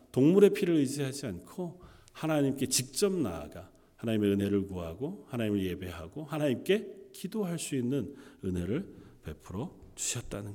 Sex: male